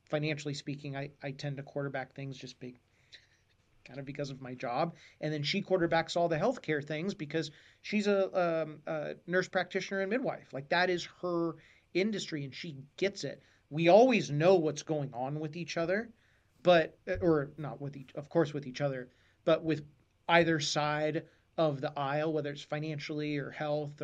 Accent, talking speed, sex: American, 180 wpm, male